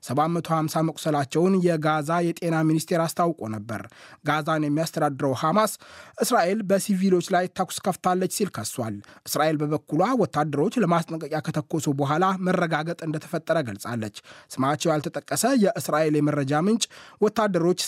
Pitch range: 150-180 Hz